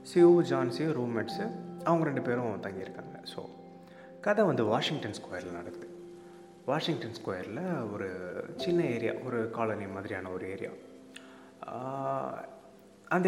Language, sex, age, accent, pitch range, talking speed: Tamil, male, 20-39, native, 95-150 Hz, 110 wpm